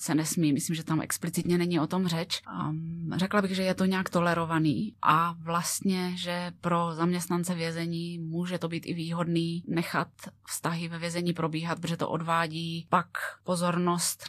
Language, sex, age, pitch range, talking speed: Czech, female, 20-39, 160-175 Hz, 165 wpm